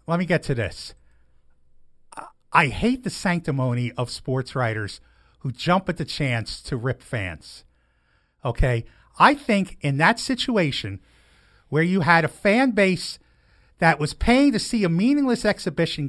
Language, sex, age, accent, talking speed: English, male, 50-69, American, 150 wpm